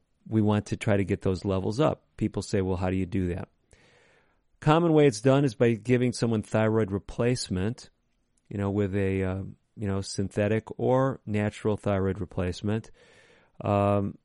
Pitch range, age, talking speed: 95-110 Hz, 40-59, 170 wpm